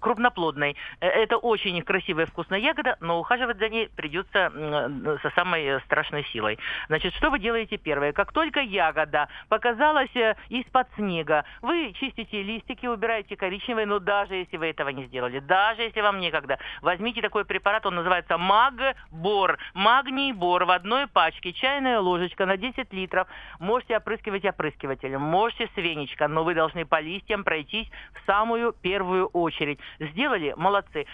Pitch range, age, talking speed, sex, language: 170-230 Hz, 50-69, 145 wpm, male, Russian